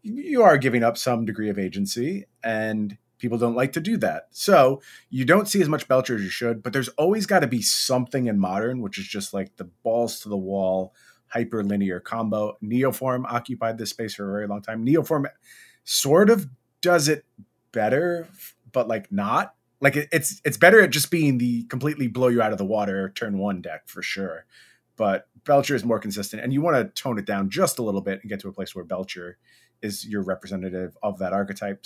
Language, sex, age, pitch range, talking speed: English, male, 30-49, 100-135 Hz, 215 wpm